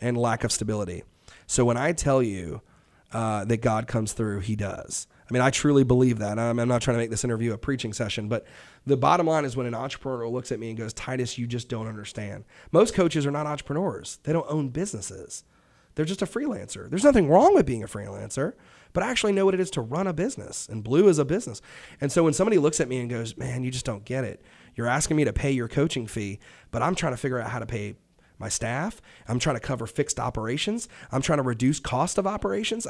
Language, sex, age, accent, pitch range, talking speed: English, male, 30-49, American, 115-150 Hz, 245 wpm